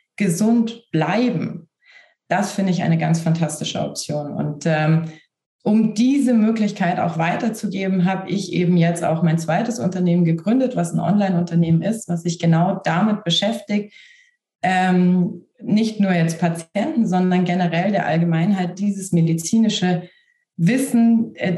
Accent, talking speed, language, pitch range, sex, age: German, 130 wpm, German, 175-210 Hz, female, 30-49